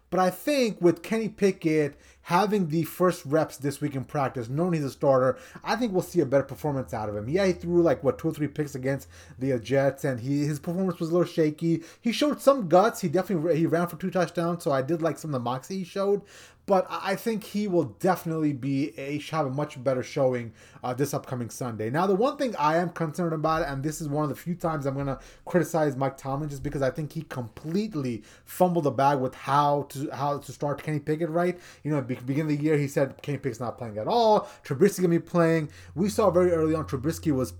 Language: English